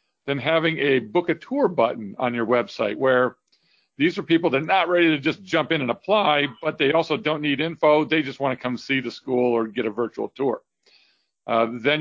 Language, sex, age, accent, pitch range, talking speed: English, male, 50-69, American, 125-155 Hz, 220 wpm